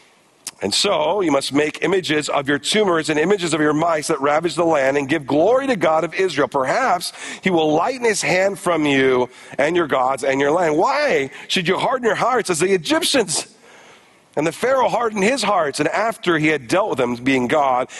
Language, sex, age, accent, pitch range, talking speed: English, male, 40-59, American, 145-195 Hz, 210 wpm